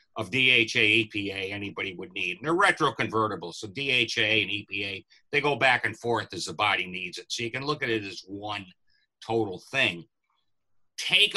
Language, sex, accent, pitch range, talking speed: English, male, American, 110-145 Hz, 180 wpm